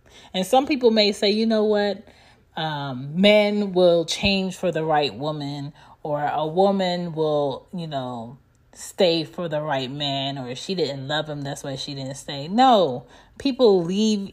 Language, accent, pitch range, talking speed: English, American, 145-195 Hz, 170 wpm